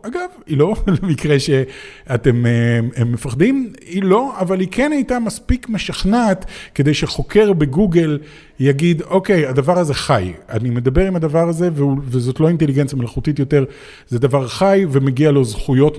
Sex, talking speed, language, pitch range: male, 145 wpm, Hebrew, 135-185 Hz